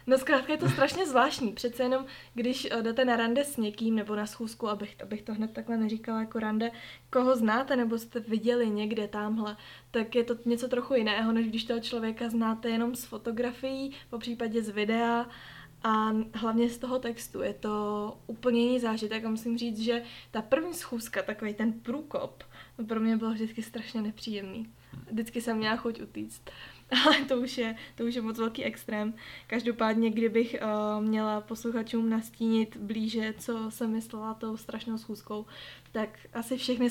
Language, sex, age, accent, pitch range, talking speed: Czech, female, 20-39, native, 215-235 Hz, 170 wpm